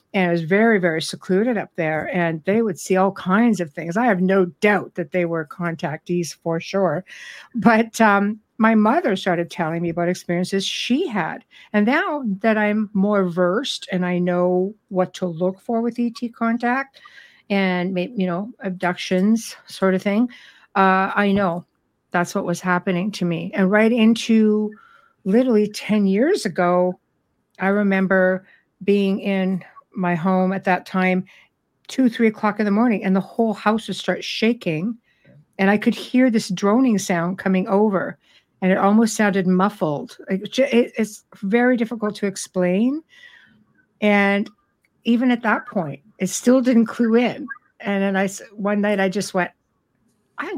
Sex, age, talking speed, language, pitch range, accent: female, 60-79, 160 wpm, English, 185-225 Hz, American